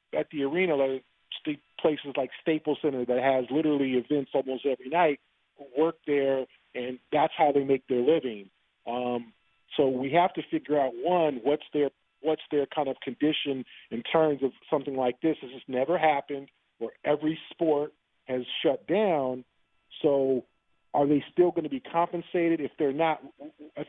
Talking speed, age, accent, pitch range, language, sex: 170 wpm, 40-59, American, 140-160 Hz, English, male